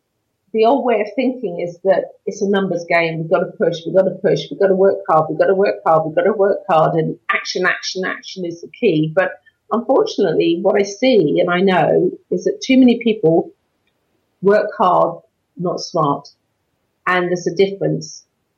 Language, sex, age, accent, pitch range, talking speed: English, female, 40-59, British, 175-205 Hz, 200 wpm